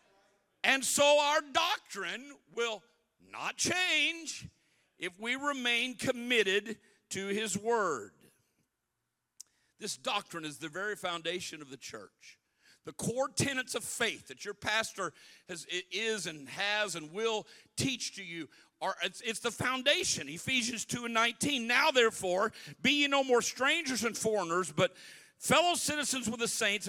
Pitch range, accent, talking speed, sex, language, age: 210-280 Hz, American, 140 wpm, male, English, 50-69